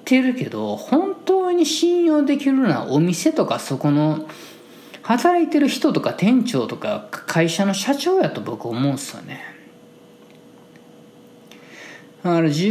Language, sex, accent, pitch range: Japanese, male, native, 135-225 Hz